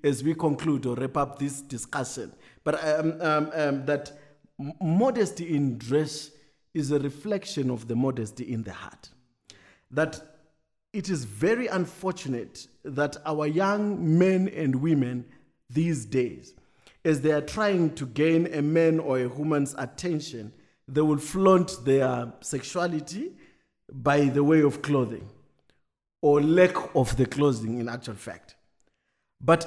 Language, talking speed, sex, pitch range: English, 140 wpm, male, 135-170 Hz